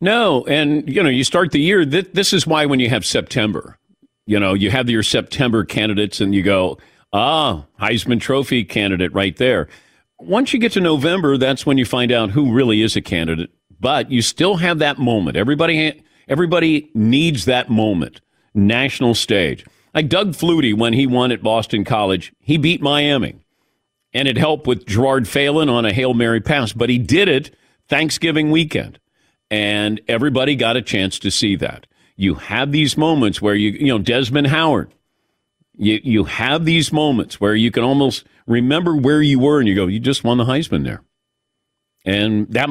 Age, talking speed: 50-69, 185 wpm